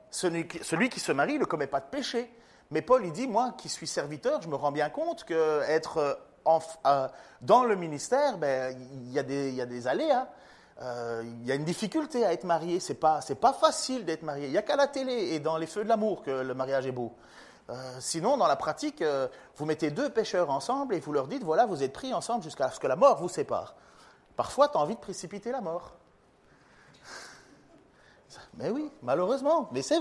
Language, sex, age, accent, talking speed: French, male, 30-49, French, 215 wpm